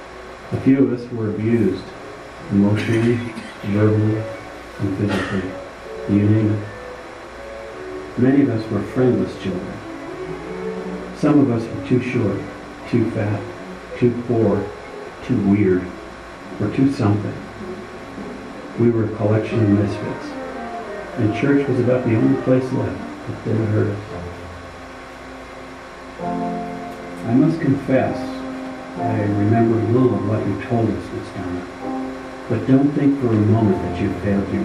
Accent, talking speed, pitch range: American, 130 wpm, 95-120 Hz